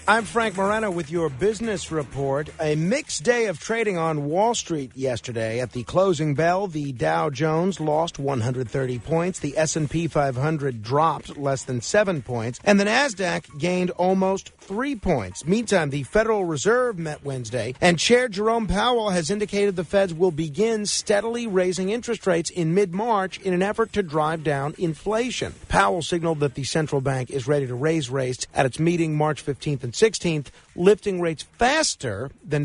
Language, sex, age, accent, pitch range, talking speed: English, male, 50-69, American, 145-205 Hz, 165 wpm